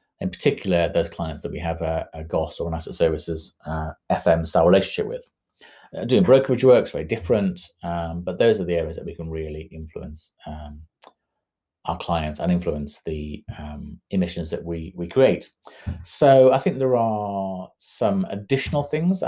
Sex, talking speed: male, 170 wpm